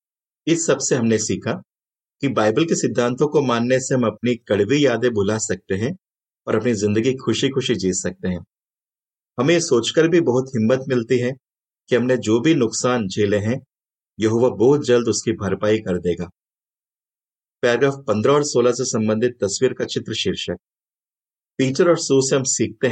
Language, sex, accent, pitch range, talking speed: Hindi, male, native, 105-135 Hz, 165 wpm